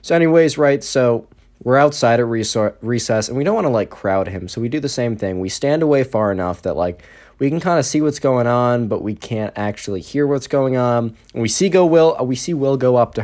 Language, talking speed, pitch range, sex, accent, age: English, 240 wpm, 100-135 Hz, male, American, 20-39